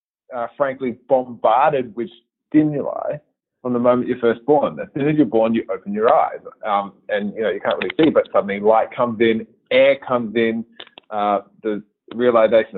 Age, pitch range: 30-49, 115-175 Hz